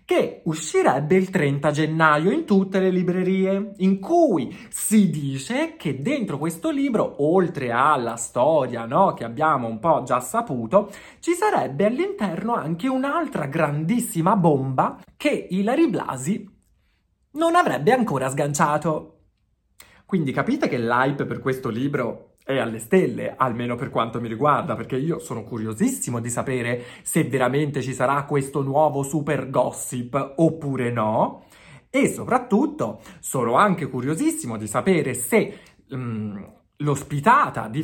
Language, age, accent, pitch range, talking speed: Italian, 30-49, native, 130-195 Hz, 130 wpm